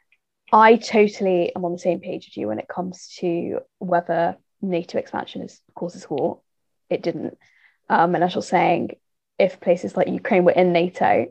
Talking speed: 175 wpm